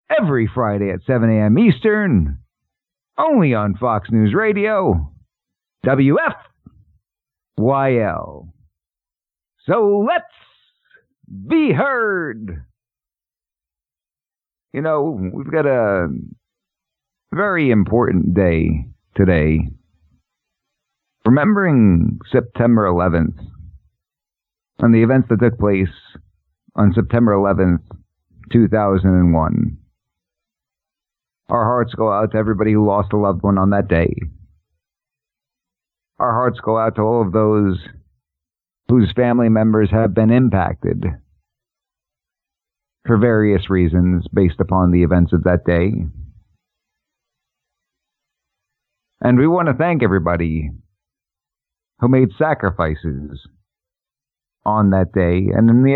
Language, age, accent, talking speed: English, 50-69, American, 100 wpm